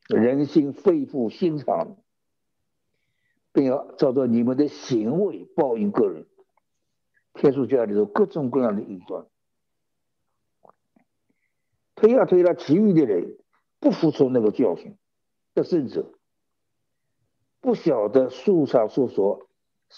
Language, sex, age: Chinese, male, 60-79